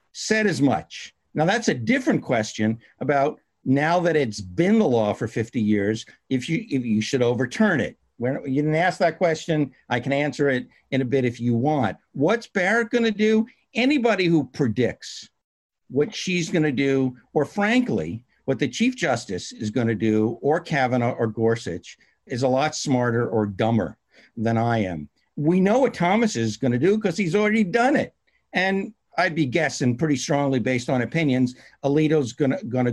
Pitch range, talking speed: 125-175 Hz, 185 wpm